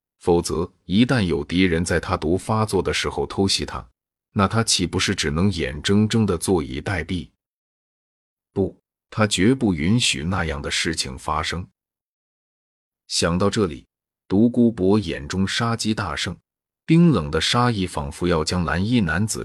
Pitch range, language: 80-110 Hz, Chinese